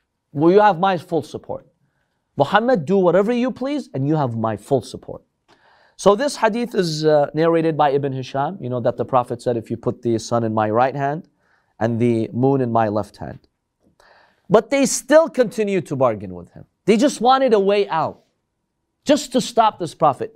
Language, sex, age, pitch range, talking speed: English, male, 30-49, 135-215 Hz, 200 wpm